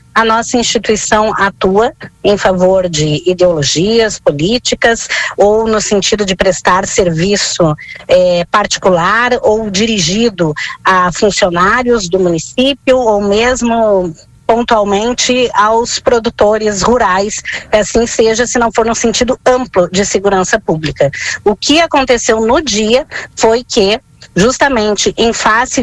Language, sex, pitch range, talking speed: Portuguese, female, 190-255 Hz, 115 wpm